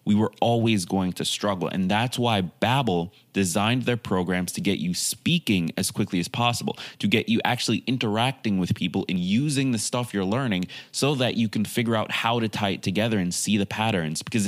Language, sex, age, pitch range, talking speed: English, male, 20-39, 90-115 Hz, 205 wpm